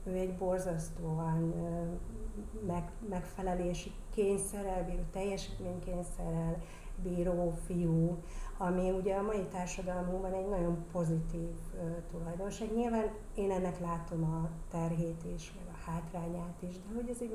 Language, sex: Hungarian, female